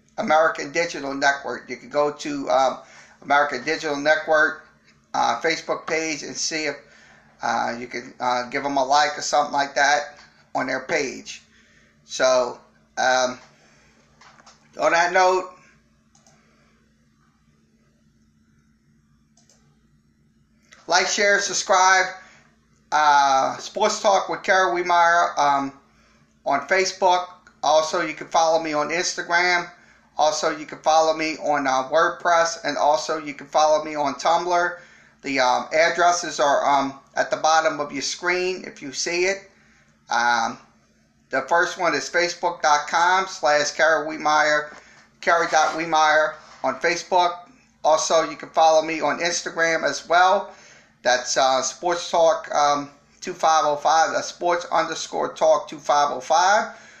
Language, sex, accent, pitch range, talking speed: English, male, American, 130-175 Hz, 120 wpm